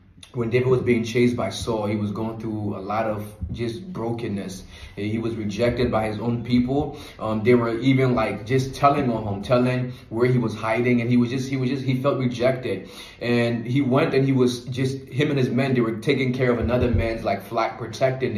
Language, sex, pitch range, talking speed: English, male, 110-130 Hz, 220 wpm